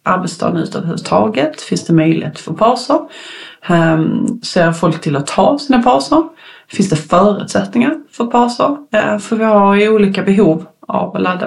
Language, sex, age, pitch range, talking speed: Swedish, female, 30-49, 175-215 Hz, 155 wpm